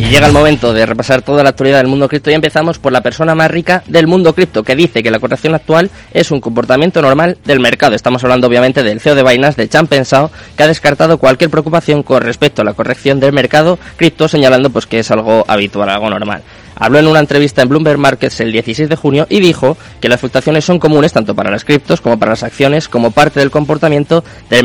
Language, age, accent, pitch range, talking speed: Spanish, 20-39, Spanish, 120-155 Hz, 230 wpm